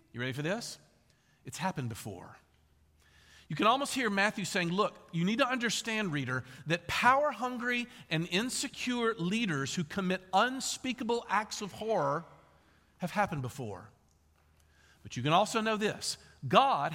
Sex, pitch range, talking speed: male, 140-225 Hz, 140 wpm